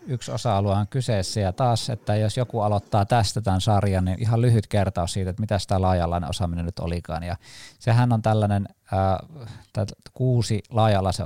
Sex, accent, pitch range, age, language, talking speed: male, native, 90-110 Hz, 20-39, Finnish, 170 wpm